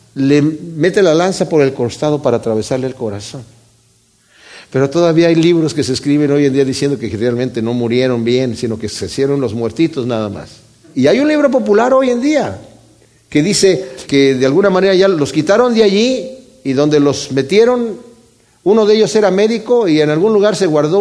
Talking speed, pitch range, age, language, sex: 195 wpm, 135-195 Hz, 50-69, Spanish, male